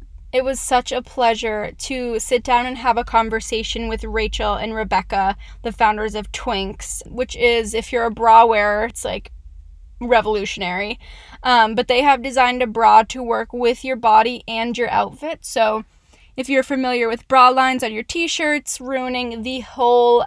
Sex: female